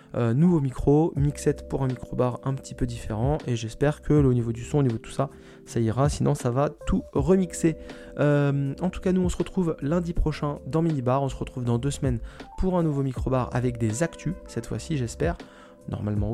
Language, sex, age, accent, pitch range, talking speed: French, male, 20-39, French, 115-145 Hz, 225 wpm